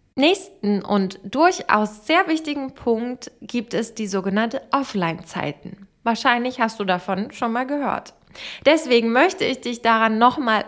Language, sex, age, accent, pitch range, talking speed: German, female, 20-39, German, 215-280 Hz, 135 wpm